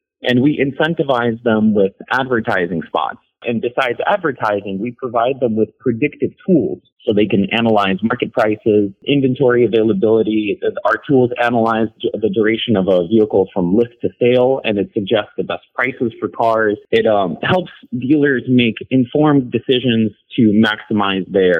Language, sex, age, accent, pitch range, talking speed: English, male, 30-49, American, 105-135 Hz, 150 wpm